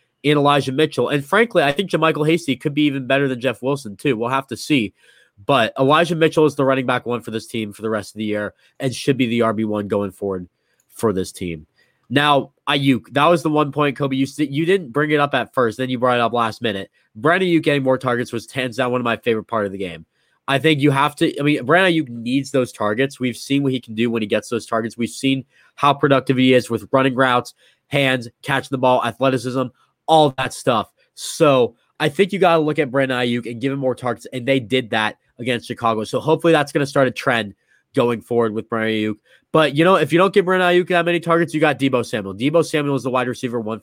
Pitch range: 115-145 Hz